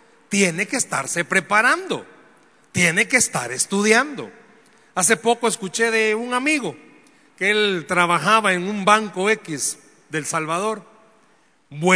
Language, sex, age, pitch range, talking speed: Spanish, male, 40-59, 190-240 Hz, 115 wpm